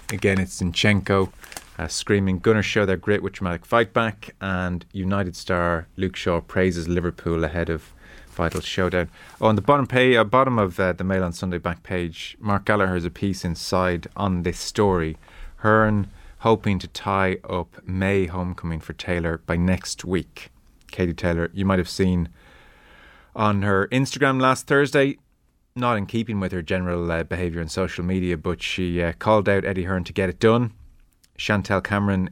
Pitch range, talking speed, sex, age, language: 85-100 Hz, 175 wpm, male, 30-49, English